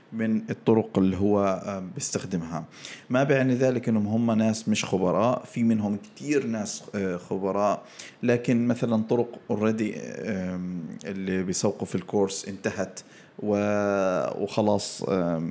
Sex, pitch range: male, 95-120 Hz